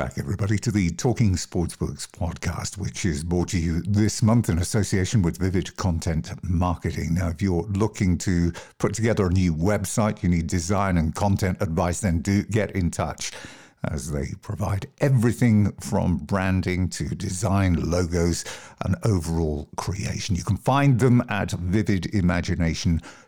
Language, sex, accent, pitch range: English, male, British, 90-110 Hz